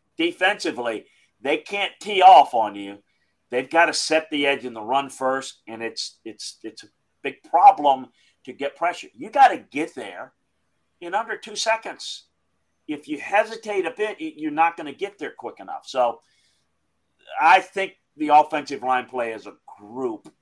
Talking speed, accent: 175 wpm, American